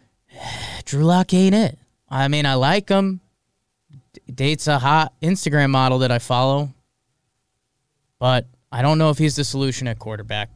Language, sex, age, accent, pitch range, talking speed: English, male, 20-39, American, 125-180 Hz, 155 wpm